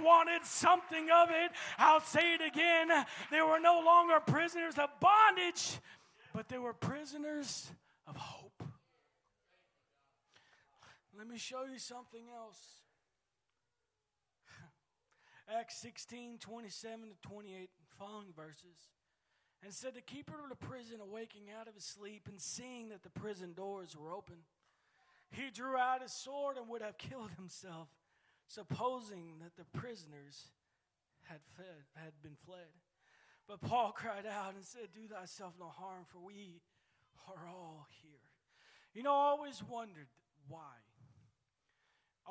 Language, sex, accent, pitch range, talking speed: English, male, American, 180-280 Hz, 140 wpm